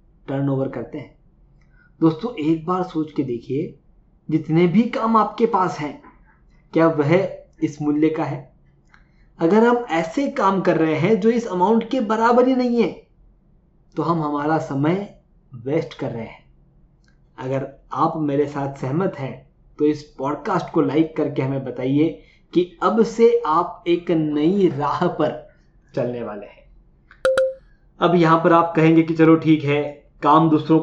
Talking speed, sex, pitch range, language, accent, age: 155 wpm, male, 150-195 Hz, Hindi, native, 20-39